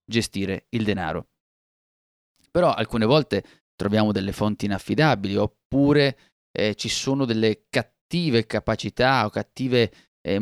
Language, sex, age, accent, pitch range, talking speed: Italian, male, 30-49, native, 100-130 Hz, 115 wpm